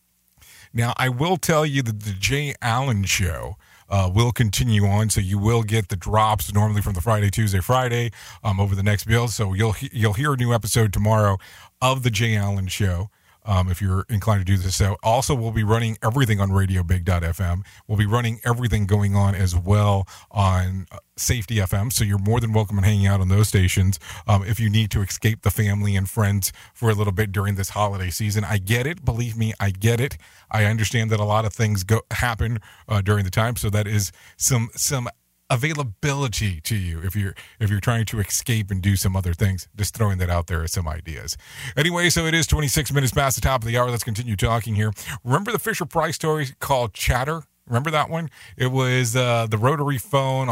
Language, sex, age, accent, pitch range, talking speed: English, male, 40-59, American, 100-120 Hz, 215 wpm